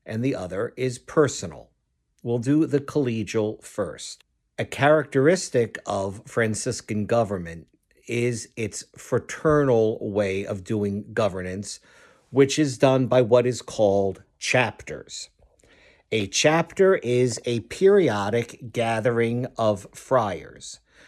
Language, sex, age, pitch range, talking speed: English, male, 50-69, 110-145 Hz, 110 wpm